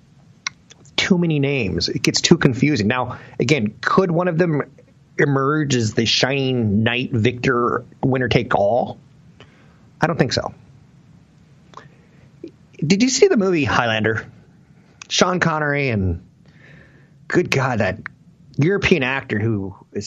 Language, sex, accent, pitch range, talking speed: English, male, American, 110-155 Hz, 125 wpm